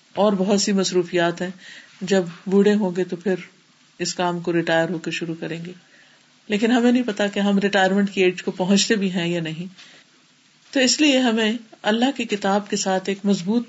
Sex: female